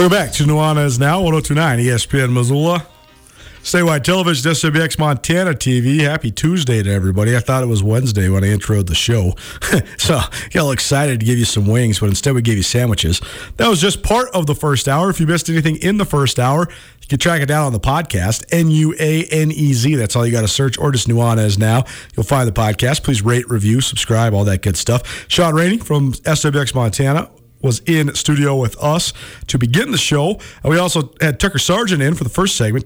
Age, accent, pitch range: 40-59, American, 115-155 Hz